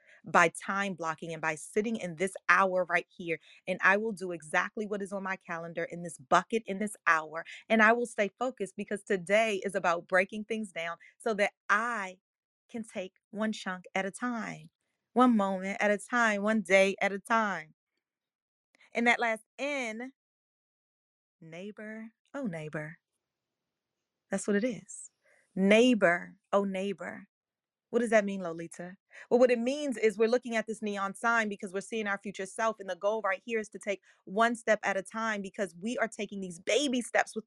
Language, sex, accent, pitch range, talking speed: English, female, American, 195-245 Hz, 185 wpm